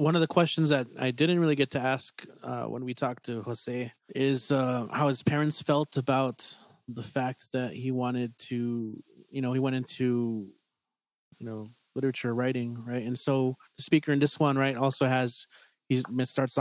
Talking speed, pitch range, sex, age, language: 190 wpm, 125-145 Hz, male, 30-49, English